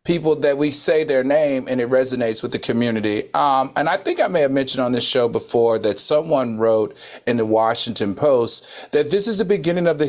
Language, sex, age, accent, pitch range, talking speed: English, male, 40-59, American, 115-160 Hz, 225 wpm